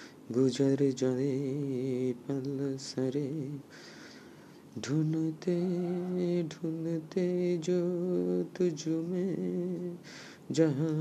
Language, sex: Bengali, male